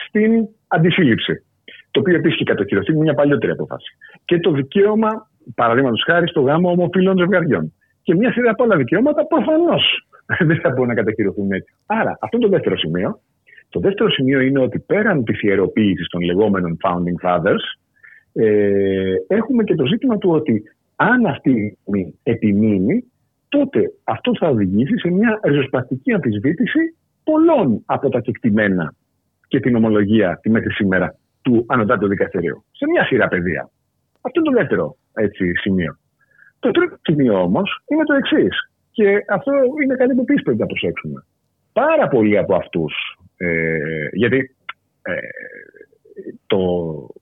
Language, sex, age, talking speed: Greek, male, 50-69, 150 wpm